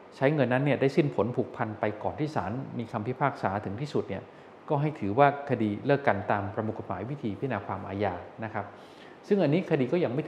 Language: Thai